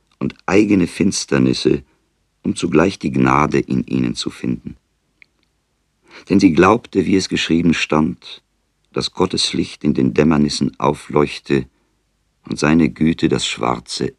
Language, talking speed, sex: German, 125 wpm, male